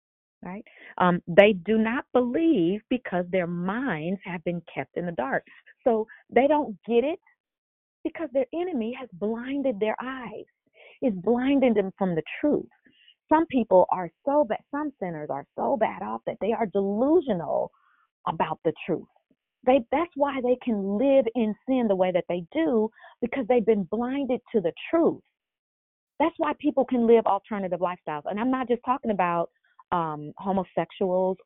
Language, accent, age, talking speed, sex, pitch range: English, American, 40-59, 165 wpm, female, 180-250 Hz